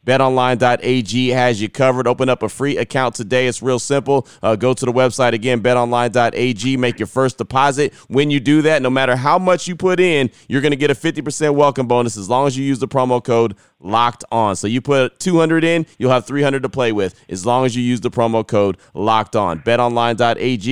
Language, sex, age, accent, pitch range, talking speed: English, male, 30-49, American, 115-135 Hz, 225 wpm